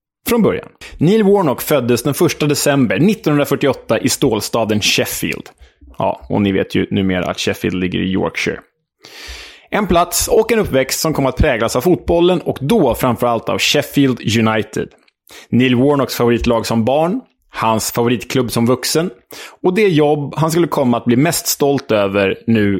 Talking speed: 160 wpm